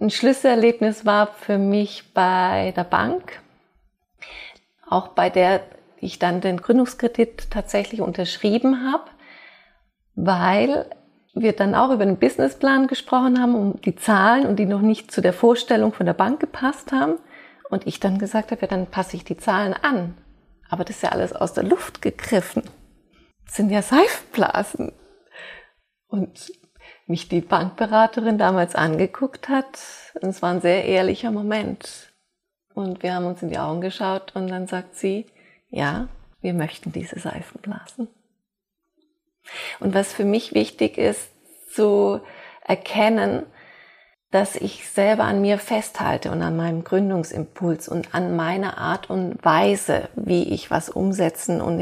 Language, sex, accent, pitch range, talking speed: German, female, German, 185-240 Hz, 145 wpm